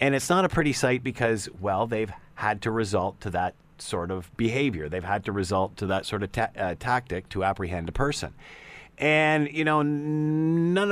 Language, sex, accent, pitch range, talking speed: English, male, American, 100-130 Hz, 200 wpm